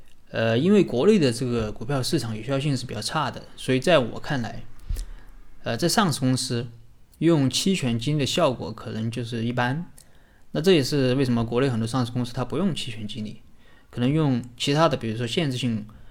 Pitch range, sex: 115-140 Hz, male